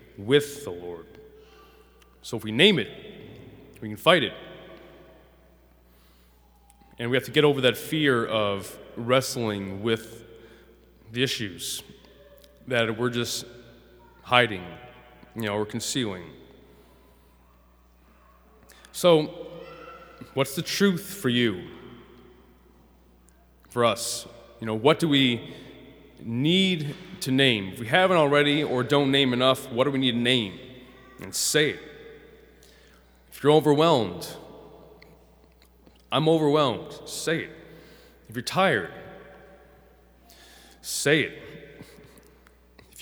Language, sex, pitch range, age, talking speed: English, male, 90-145 Hz, 20-39, 110 wpm